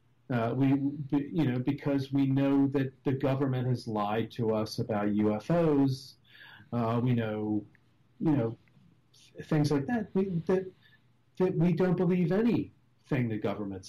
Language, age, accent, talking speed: English, 40-59, American, 140 wpm